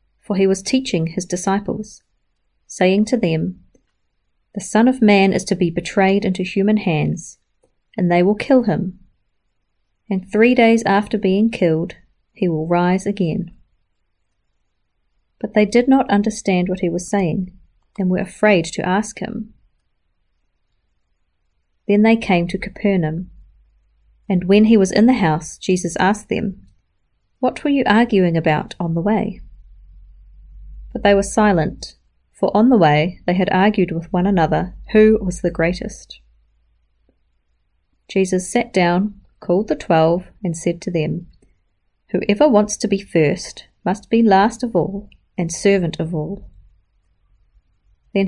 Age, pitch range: 40-59, 160-205 Hz